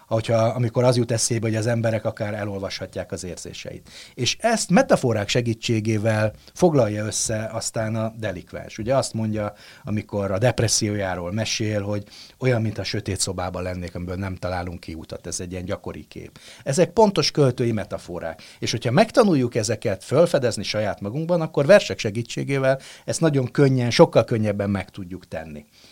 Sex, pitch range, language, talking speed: male, 100-130 Hz, Hungarian, 155 wpm